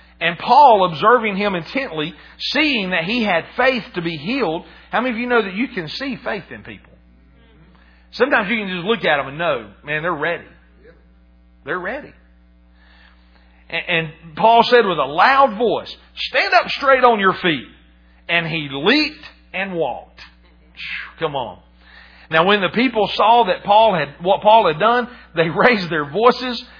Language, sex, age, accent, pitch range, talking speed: English, male, 40-59, American, 140-230 Hz, 170 wpm